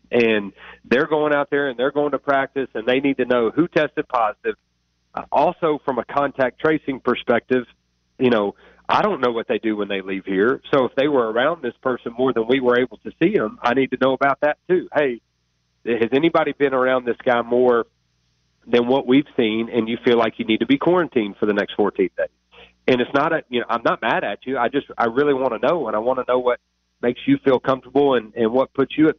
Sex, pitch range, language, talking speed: male, 115-145 Hz, English, 240 wpm